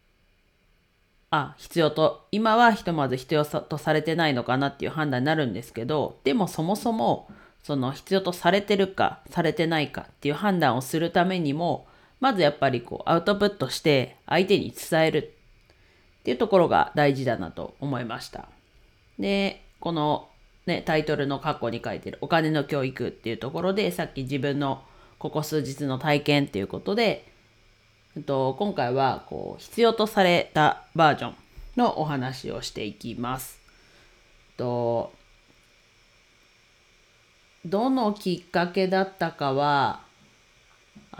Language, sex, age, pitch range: Japanese, female, 40-59, 130-180 Hz